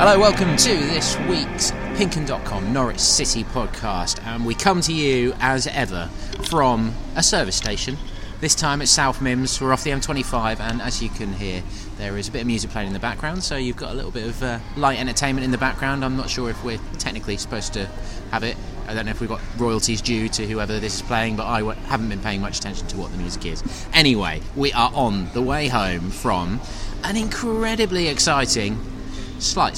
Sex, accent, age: male, British, 20-39